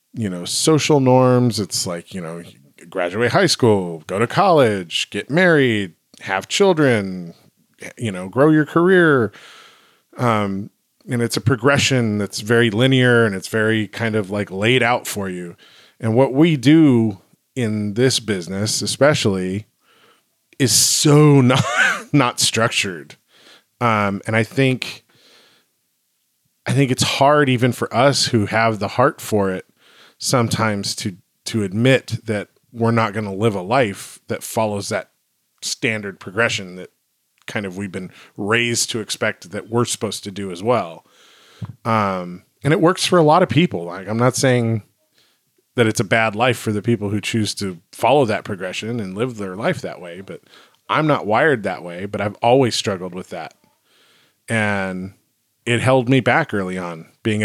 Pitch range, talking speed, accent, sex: 100-125 Hz, 165 wpm, American, male